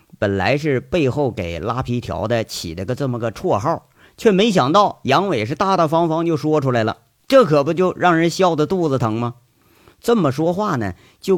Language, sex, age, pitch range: Chinese, male, 50-69, 115-180 Hz